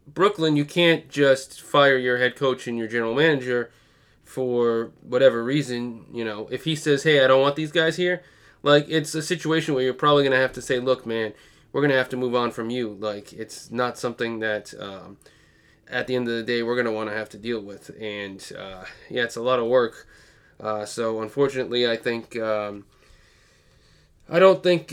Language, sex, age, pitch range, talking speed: English, male, 20-39, 115-140 Hz, 205 wpm